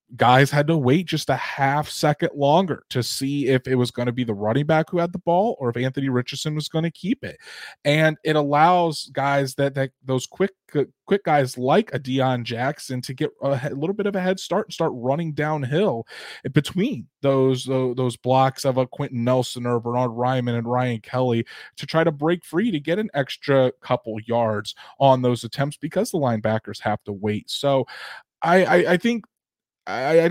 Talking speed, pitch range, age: 200 wpm, 125-155 Hz, 20-39